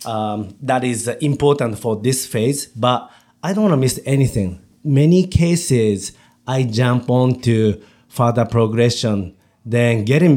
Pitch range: 110-140 Hz